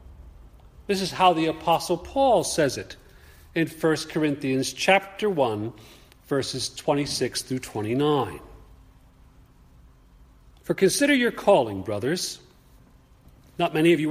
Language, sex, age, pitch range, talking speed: English, male, 40-59, 100-165 Hz, 110 wpm